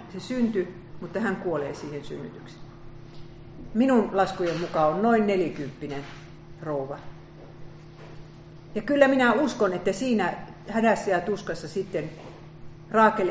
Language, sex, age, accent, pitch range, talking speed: Finnish, female, 50-69, native, 160-205 Hz, 115 wpm